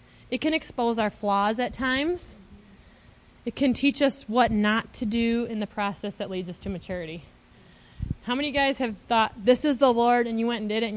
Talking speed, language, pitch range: 225 wpm, English, 230-290 Hz